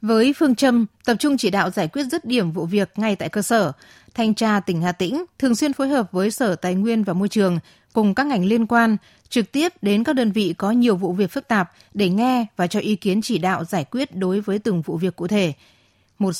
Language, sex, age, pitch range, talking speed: Vietnamese, female, 20-39, 185-235 Hz, 250 wpm